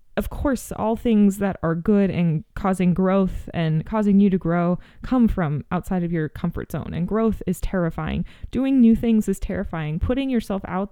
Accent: American